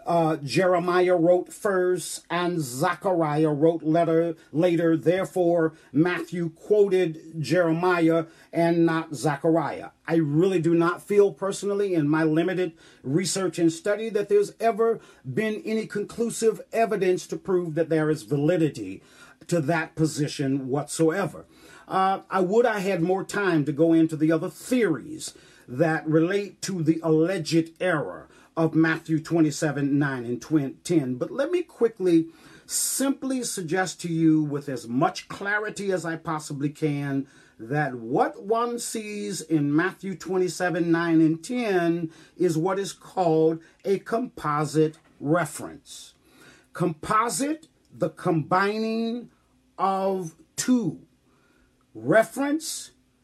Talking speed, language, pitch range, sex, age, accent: 125 wpm, English, 160-195 Hz, male, 40-59, American